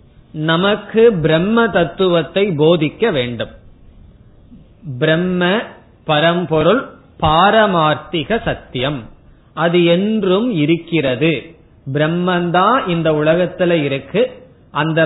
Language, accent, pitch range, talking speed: Tamil, native, 150-205 Hz, 70 wpm